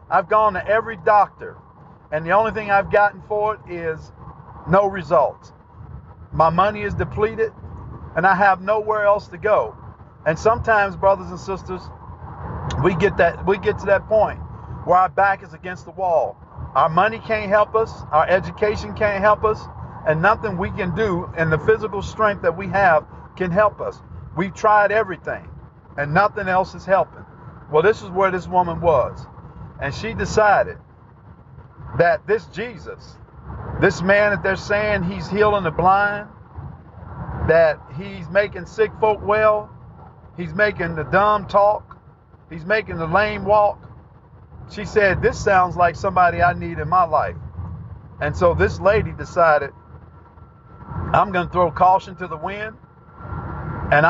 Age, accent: 50-69, American